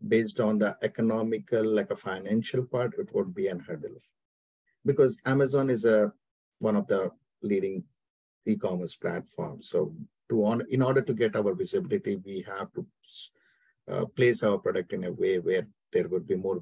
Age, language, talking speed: 50-69, English, 170 wpm